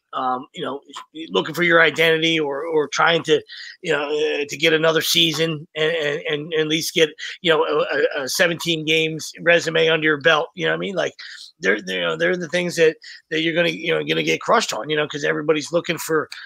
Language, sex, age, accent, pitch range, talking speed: English, male, 30-49, American, 160-200 Hz, 230 wpm